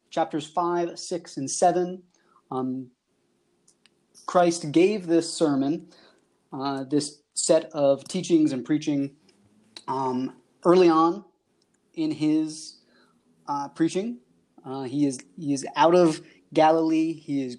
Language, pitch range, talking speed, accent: English, 140-175 Hz, 115 wpm, American